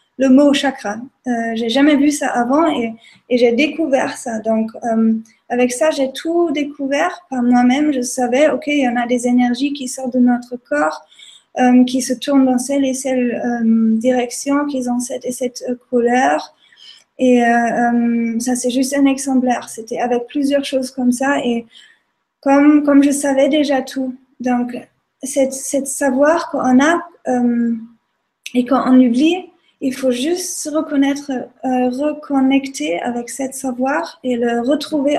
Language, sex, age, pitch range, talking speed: French, female, 20-39, 245-285 Hz, 170 wpm